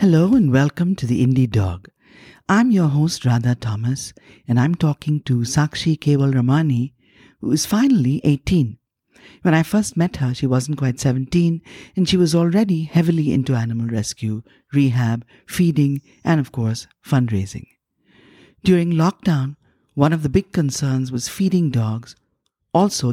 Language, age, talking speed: English, 50-69, 150 wpm